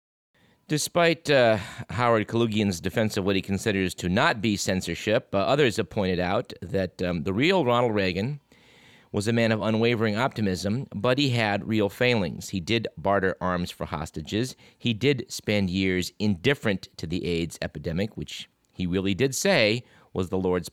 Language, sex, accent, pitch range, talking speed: English, male, American, 90-115 Hz, 170 wpm